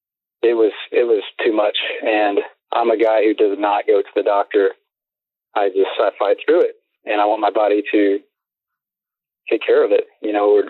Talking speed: 200 wpm